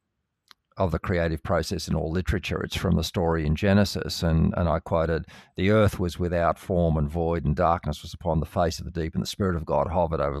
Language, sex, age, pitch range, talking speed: English, male, 50-69, 85-110 Hz, 230 wpm